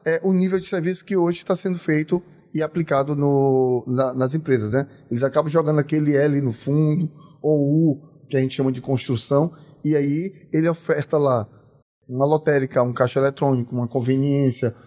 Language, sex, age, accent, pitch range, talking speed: Portuguese, male, 20-39, Brazilian, 140-180 Hz, 170 wpm